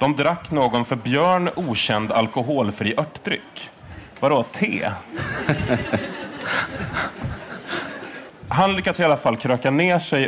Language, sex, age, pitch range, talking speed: Swedish, male, 30-49, 110-145 Hz, 105 wpm